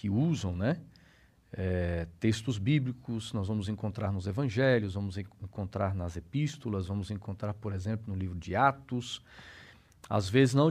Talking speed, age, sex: 140 wpm, 50-69, male